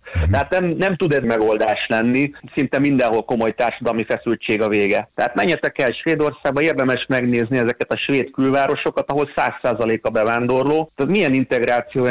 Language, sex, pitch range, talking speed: Hungarian, male, 115-140 Hz, 155 wpm